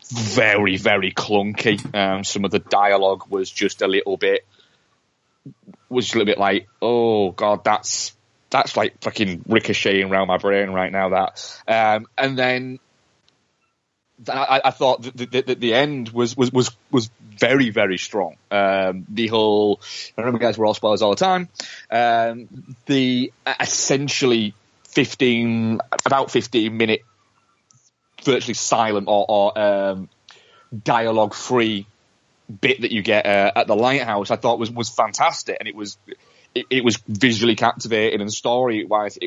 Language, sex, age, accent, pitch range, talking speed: English, male, 20-39, British, 105-125 Hz, 150 wpm